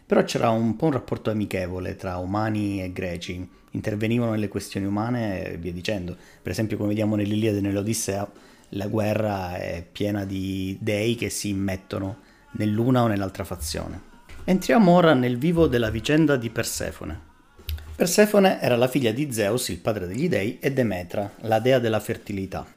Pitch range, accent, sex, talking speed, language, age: 100-125 Hz, native, male, 165 wpm, Italian, 30-49